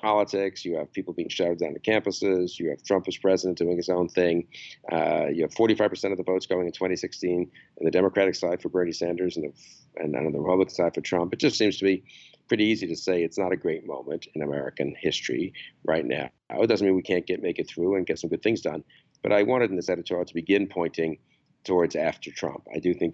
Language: English